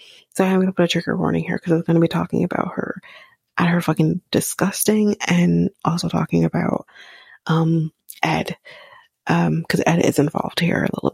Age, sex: 30-49, female